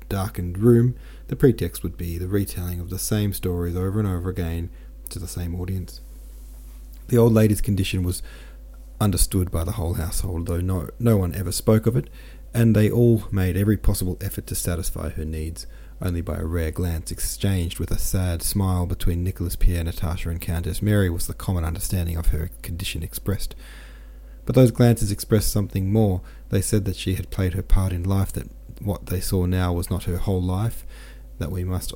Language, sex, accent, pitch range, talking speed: English, male, Australian, 85-100 Hz, 195 wpm